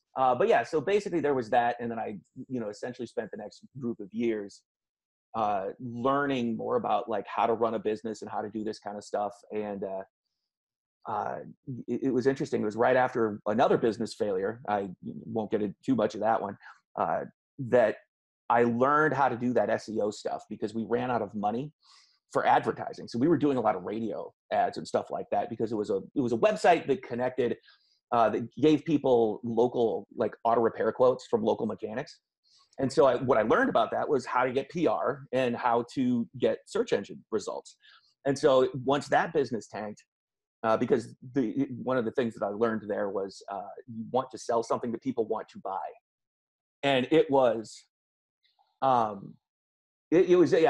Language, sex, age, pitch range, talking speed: English, male, 30-49, 115-155 Hz, 200 wpm